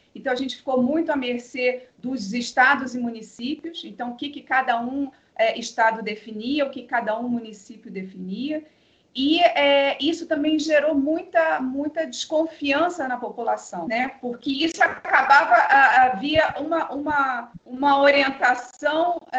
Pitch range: 235-305 Hz